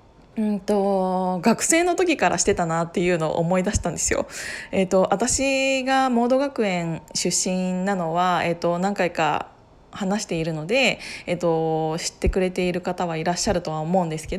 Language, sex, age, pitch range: Japanese, female, 20-39, 175-230 Hz